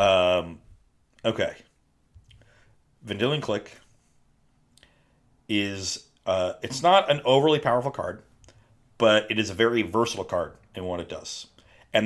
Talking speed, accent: 120 wpm, American